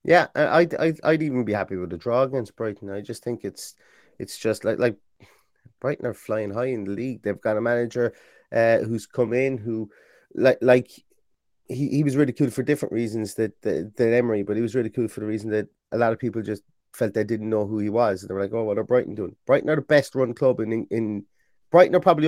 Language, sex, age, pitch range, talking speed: English, male, 30-49, 115-145 Hz, 240 wpm